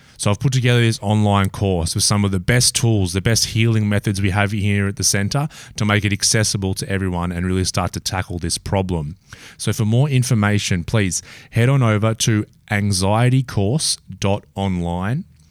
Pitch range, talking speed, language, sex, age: 95-115 Hz, 180 wpm, English, male, 20-39